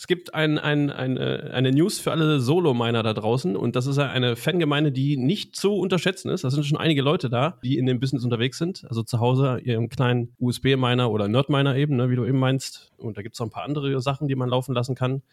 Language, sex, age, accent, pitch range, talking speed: German, male, 30-49, German, 120-155 Hz, 245 wpm